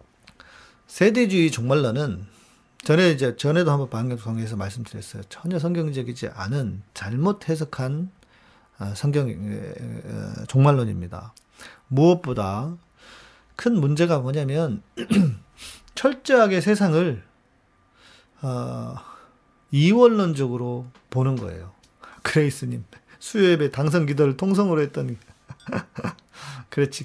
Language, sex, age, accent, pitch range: Korean, male, 40-59, native, 110-155 Hz